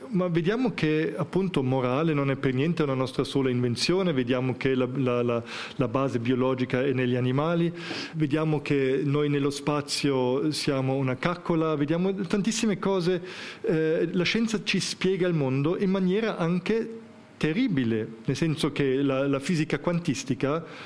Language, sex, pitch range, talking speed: Italian, male, 135-175 Hz, 145 wpm